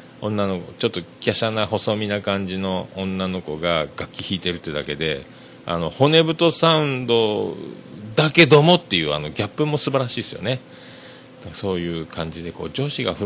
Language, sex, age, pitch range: Japanese, male, 40-59, 85-130 Hz